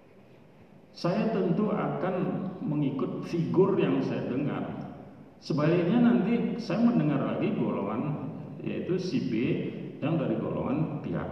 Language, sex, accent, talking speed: Indonesian, male, native, 110 wpm